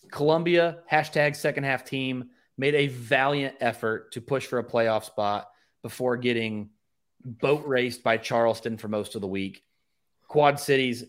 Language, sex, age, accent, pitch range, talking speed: English, male, 30-49, American, 115-145 Hz, 150 wpm